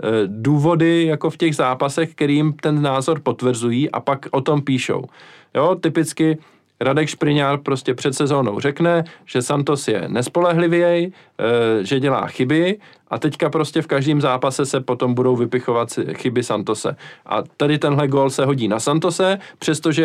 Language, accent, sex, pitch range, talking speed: Czech, native, male, 115-150 Hz, 150 wpm